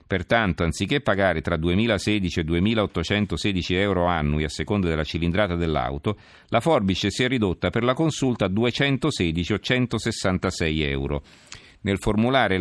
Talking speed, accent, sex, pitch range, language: 140 wpm, native, male, 85-110 Hz, Italian